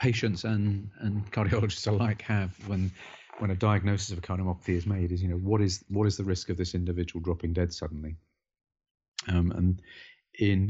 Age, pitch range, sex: 40-59, 85-100 Hz, male